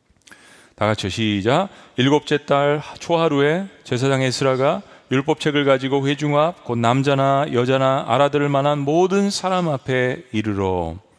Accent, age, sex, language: native, 40-59, male, Korean